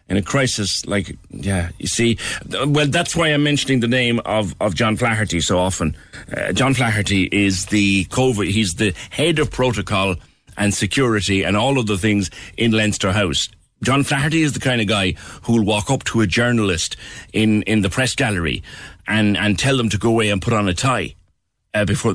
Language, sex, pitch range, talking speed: English, male, 95-125 Hz, 200 wpm